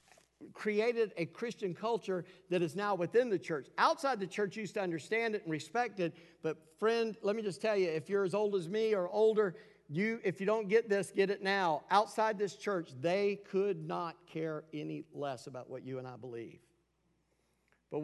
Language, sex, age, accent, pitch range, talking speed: English, male, 50-69, American, 170-225 Hz, 200 wpm